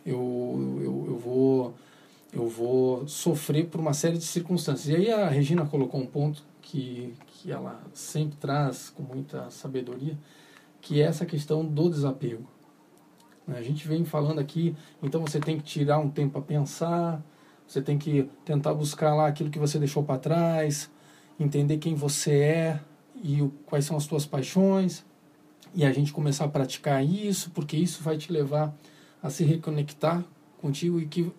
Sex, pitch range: male, 145-165 Hz